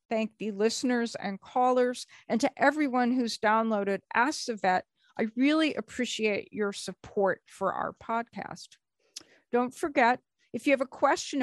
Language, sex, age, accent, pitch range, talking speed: English, female, 50-69, American, 210-265 Hz, 145 wpm